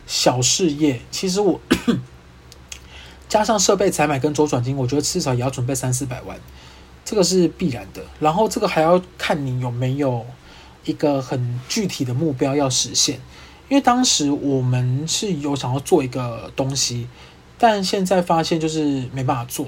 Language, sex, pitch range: Chinese, male, 125-160 Hz